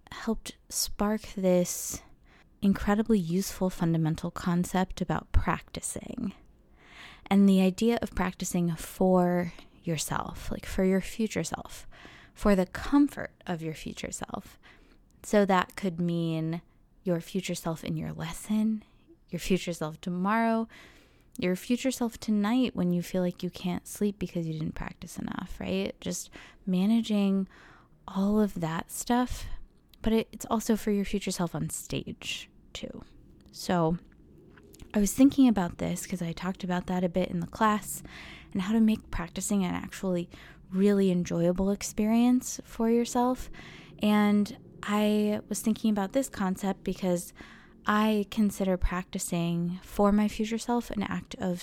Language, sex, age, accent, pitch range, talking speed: English, female, 20-39, American, 180-215 Hz, 140 wpm